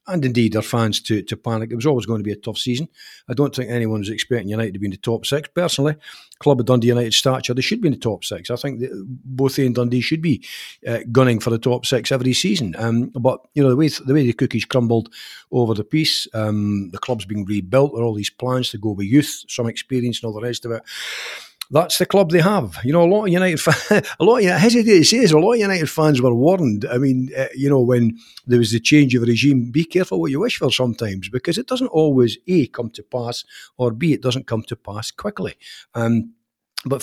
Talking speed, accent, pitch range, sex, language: 250 wpm, British, 115-145 Hz, male, English